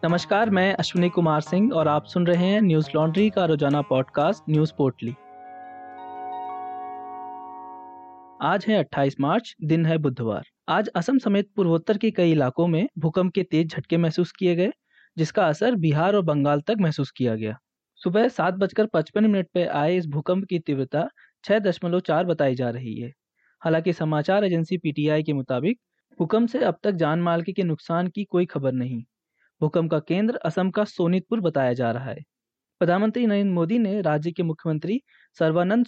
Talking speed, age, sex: 165 wpm, 20-39, male